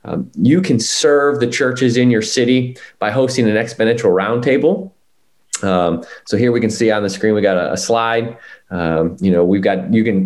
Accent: American